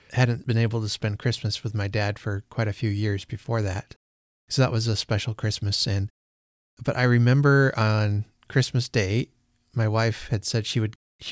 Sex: male